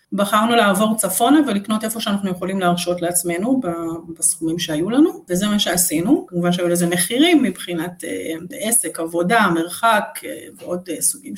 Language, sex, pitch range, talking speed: Hebrew, female, 180-215 Hz, 130 wpm